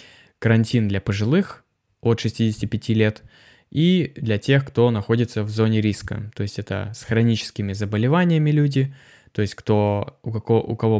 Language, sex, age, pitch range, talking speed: Russian, male, 20-39, 105-125 Hz, 155 wpm